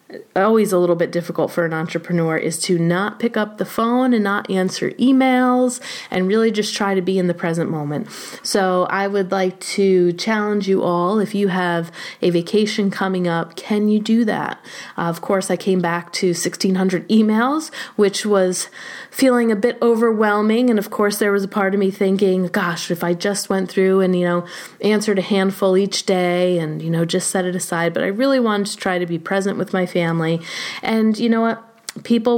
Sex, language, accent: female, English, American